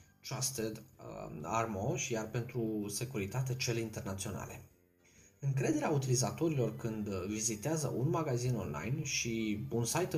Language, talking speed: Romanian, 110 wpm